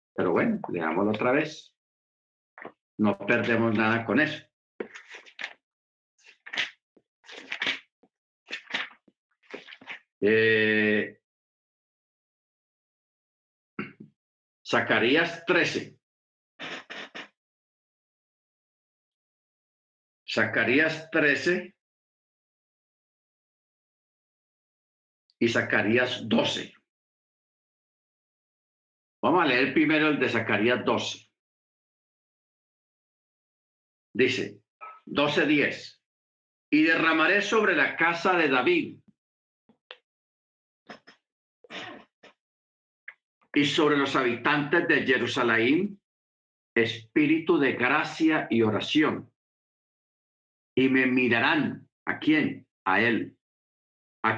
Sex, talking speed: male, 60 wpm